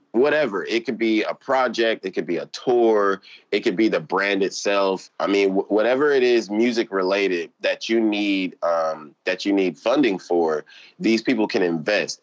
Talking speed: 180 wpm